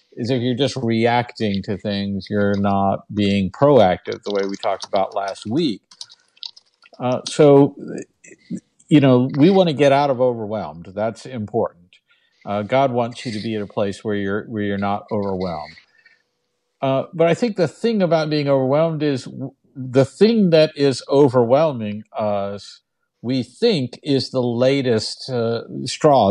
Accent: American